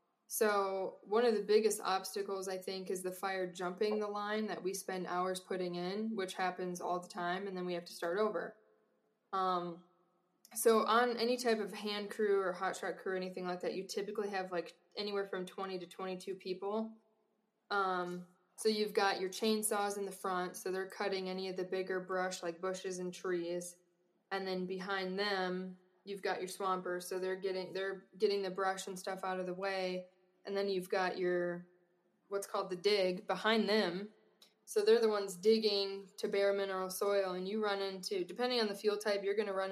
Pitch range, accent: 185-205 Hz, American